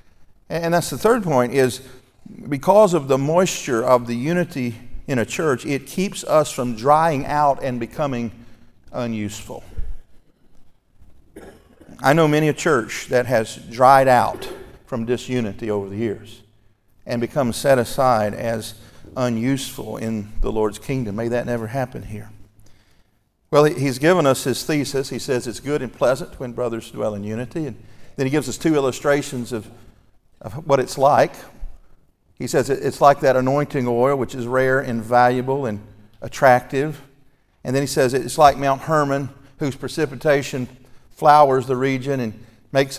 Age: 50-69